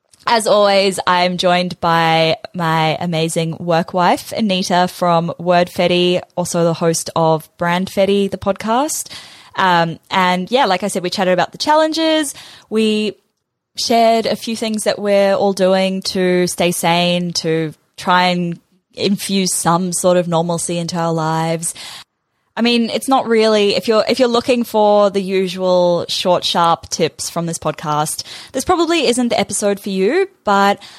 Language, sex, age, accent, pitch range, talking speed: English, female, 10-29, Australian, 165-200 Hz, 160 wpm